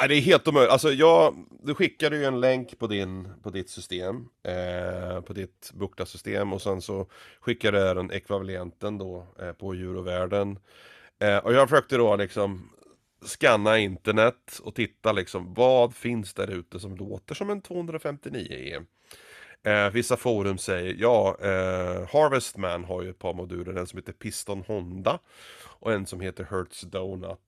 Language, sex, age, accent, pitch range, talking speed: Swedish, male, 30-49, native, 95-115 Hz, 170 wpm